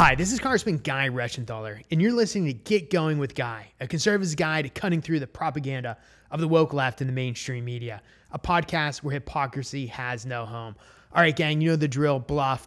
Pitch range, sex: 130-170 Hz, male